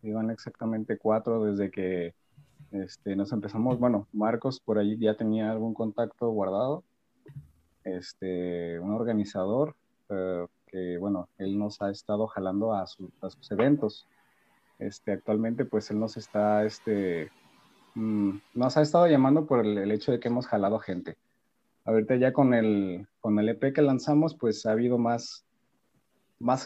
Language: Spanish